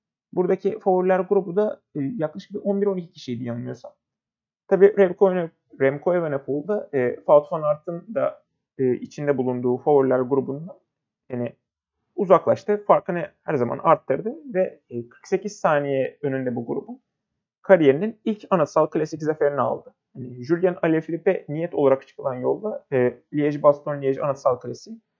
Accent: native